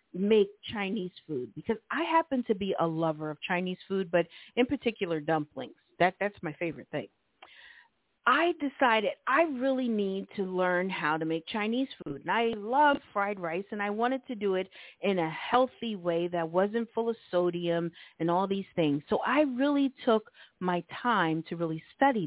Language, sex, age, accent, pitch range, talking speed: English, female, 40-59, American, 185-250 Hz, 180 wpm